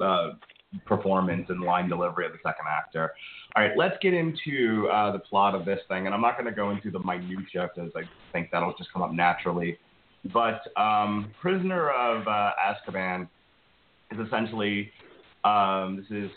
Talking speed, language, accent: 175 wpm, English, American